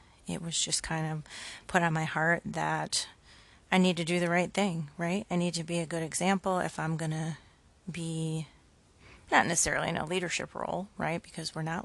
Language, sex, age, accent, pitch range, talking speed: English, female, 30-49, American, 160-185 Hz, 205 wpm